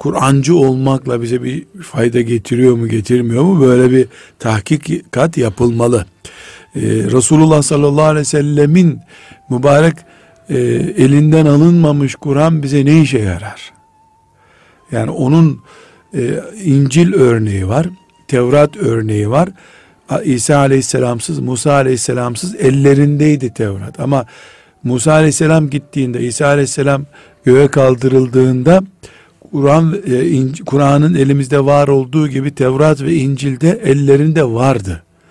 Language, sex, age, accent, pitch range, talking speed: Turkish, male, 60-79, native, 130-155 Hz, 105 wpm